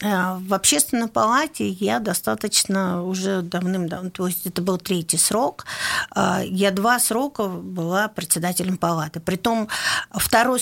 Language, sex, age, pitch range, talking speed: Russian, female, 50-69, 180-225 Hz, 120 wpm